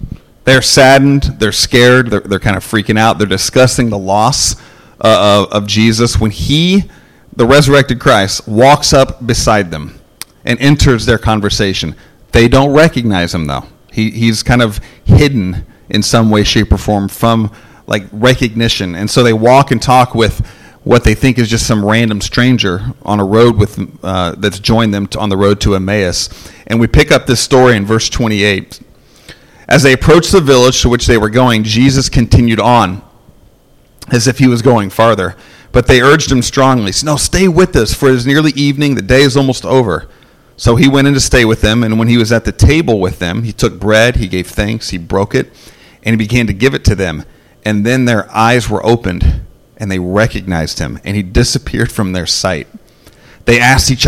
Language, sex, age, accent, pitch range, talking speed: English, male, 40-59, American, 105-130 Hz, 200 wpm